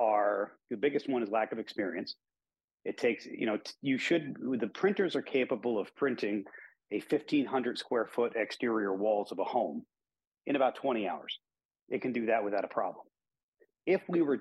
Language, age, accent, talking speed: English, 40-59, American, 180 wpm